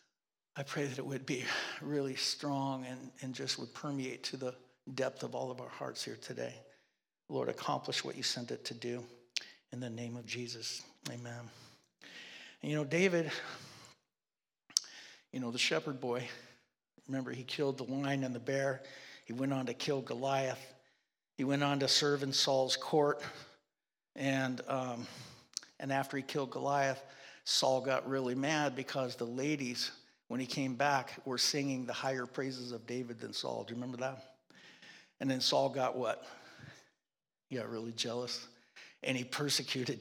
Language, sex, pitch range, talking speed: English, male, 125-140 Hz, 165 wpm